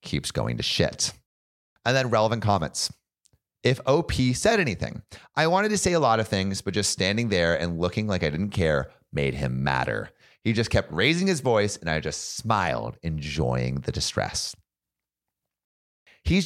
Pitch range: 85-130 Hz